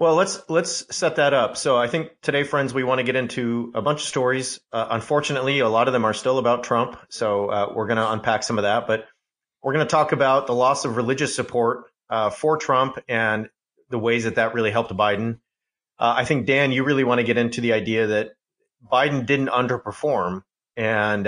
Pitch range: 105-135 Hz